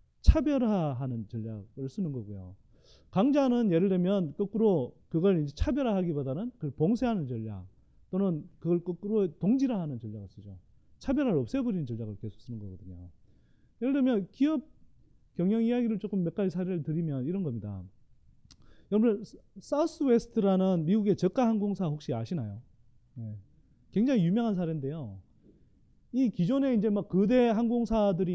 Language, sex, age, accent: Korean, male, 30-49, native